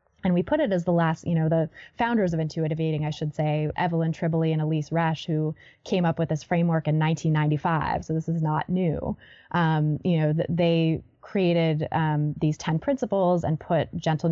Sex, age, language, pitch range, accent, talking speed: female, 20-39, English, 155-175 Hz, American, 195 wpm